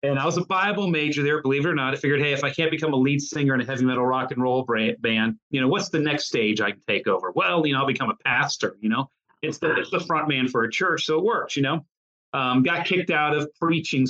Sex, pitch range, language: male, 120-150 Hz, English